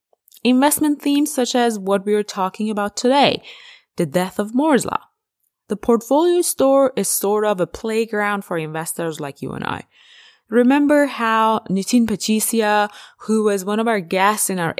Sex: female